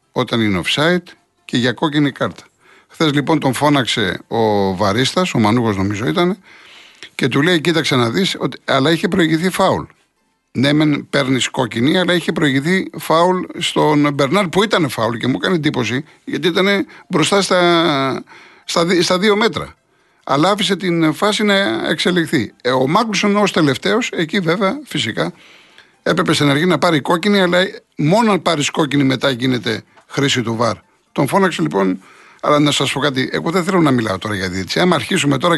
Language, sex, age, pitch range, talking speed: Greek, male, 60-79, 130-180 Hz, 165 wpm